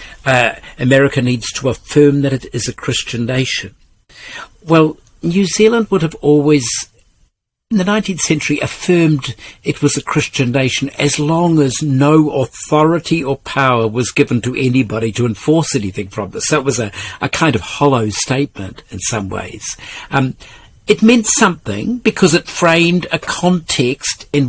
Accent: British